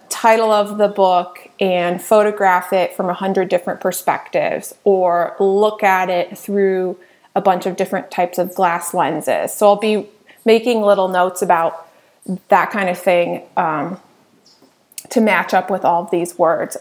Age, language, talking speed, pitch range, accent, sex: 20-39, English, 155 wpm, 185-220 Hz, American, female